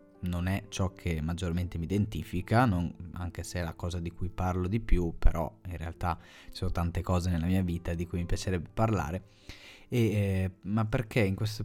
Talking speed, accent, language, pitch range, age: 200 wpm, native, Italian, 90-105 Hz, 30-49